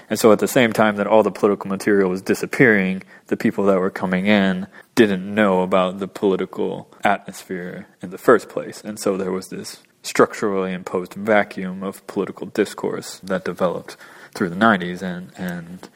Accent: American